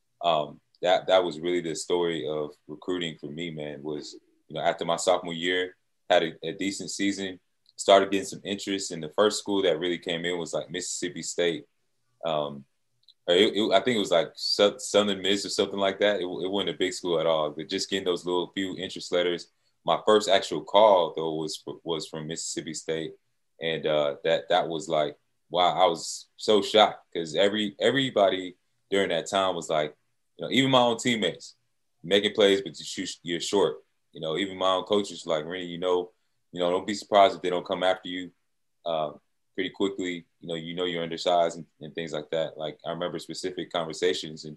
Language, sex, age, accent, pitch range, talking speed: English, male, 20-39, American, 85-100 Hz, 205 wpm